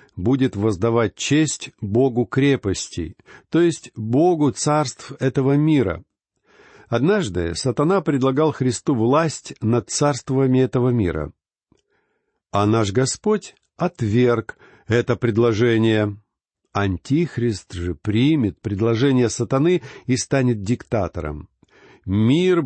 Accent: native